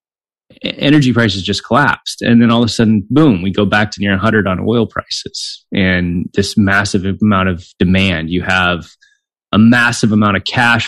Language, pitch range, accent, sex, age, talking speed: English, 95-115 Hz, American, male, 20-39, 180 wpm